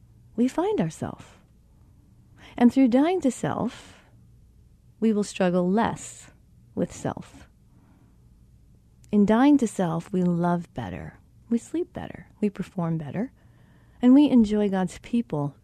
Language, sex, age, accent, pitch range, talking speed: English, female, 40-59, American, 170-225 Hz, 120 wpm